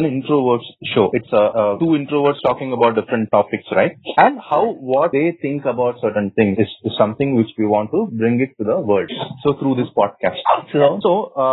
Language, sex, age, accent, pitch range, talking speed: English, male, 30-49, Indian, 110-145 Hz, 195 wpm